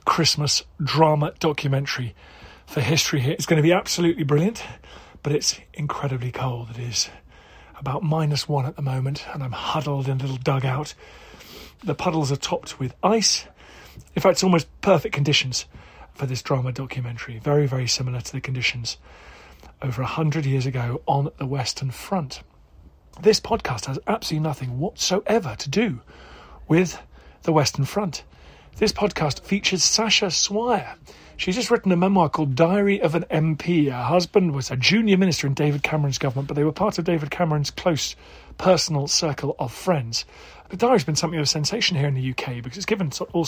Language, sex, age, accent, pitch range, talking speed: English, male, 40-59, British, 130-170 Hz, 175 wpm